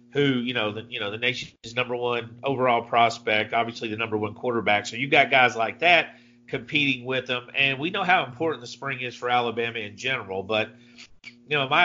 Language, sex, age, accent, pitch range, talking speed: English, male, 40-59, American, 115-135 Hz, 220 wpm